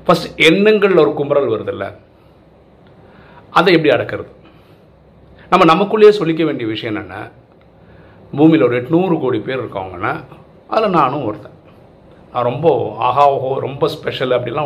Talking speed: 125 wpm